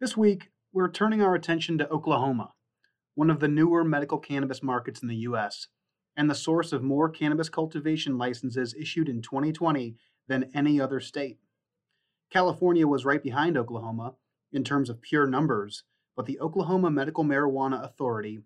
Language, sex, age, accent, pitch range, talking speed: English, male, 30-49, American, 125-155 Hz, 160 wpm